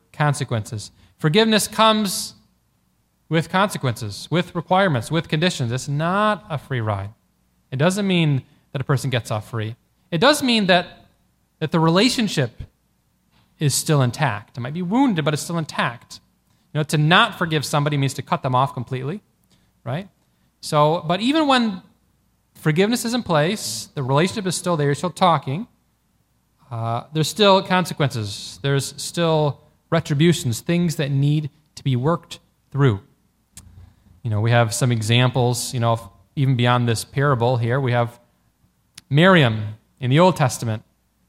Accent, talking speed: American, 150 wpm